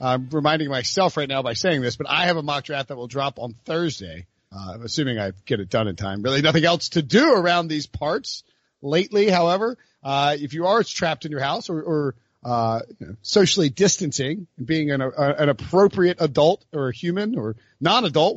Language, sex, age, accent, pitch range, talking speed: English, male, 40-59, American, 140-195 Hz, 210 wpm